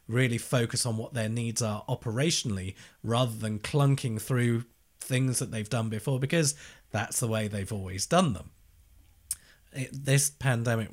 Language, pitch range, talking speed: English, 100-125 Hz, 155 wpm